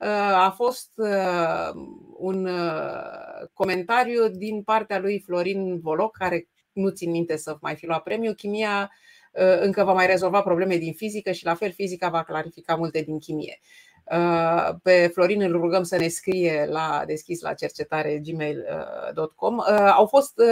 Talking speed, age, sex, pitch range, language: 145 wpm, 30-49, female, 170-205 Hz, Romanian